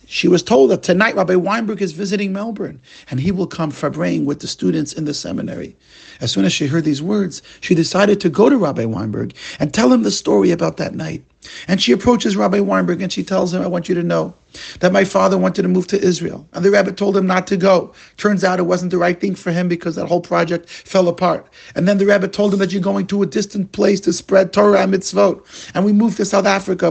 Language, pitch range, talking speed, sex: English, 160-205 Hz, 250 wpm, male